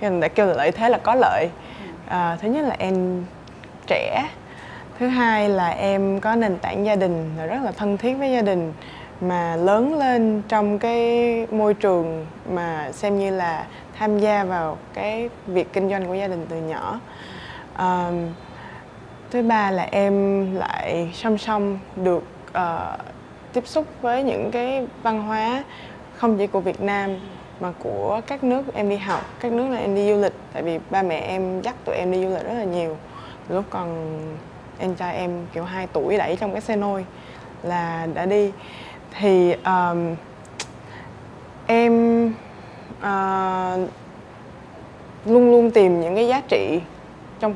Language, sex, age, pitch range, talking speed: Vietnamese, female, 20-39, 175-220 Hz, 165 wpm